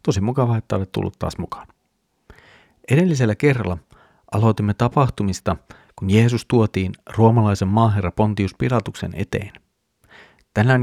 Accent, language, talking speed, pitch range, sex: native, Finnish, 110 wpm, 100-110 Hz, male